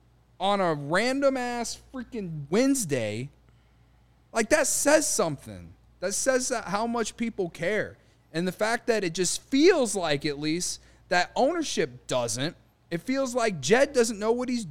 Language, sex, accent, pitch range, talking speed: English, male, American, 165-250 Hz, 145 wpm